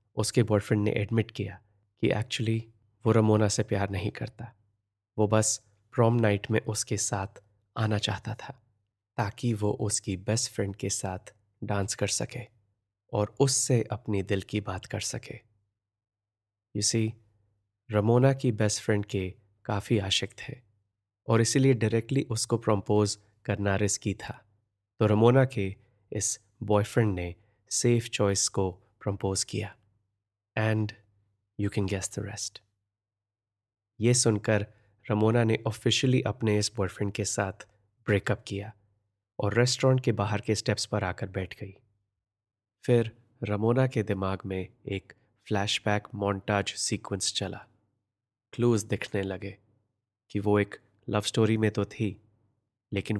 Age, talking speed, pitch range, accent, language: 20-39, 135 wpm, 100-110 Hz, native, Hindi